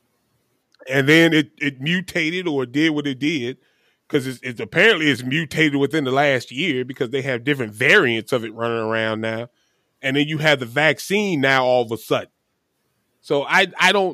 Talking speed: 190 wpm